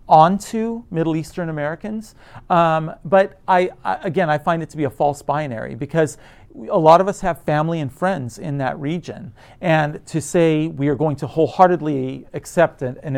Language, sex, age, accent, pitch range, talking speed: English, male, 40-59, American, 130-160 Hz, 180 wpm